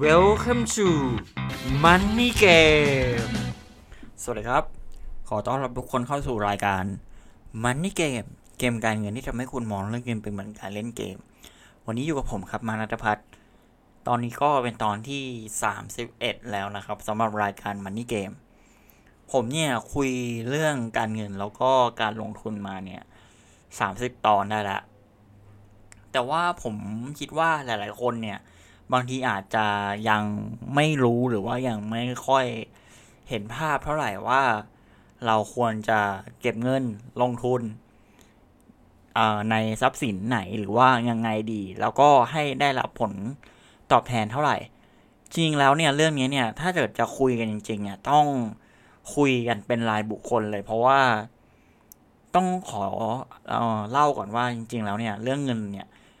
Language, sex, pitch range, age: English, male, 105-130 Hz, 20-39